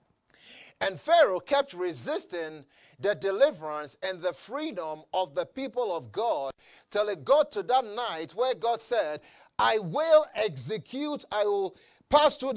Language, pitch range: English, 195-295 Hz